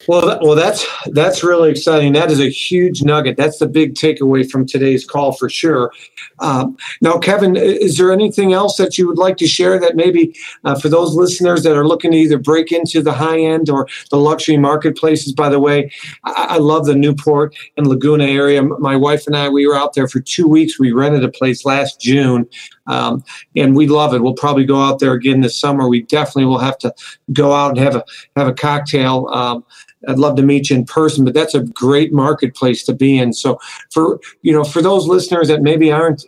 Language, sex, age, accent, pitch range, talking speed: English, male, 50-69, American, 135-155 Hz, 220 wpm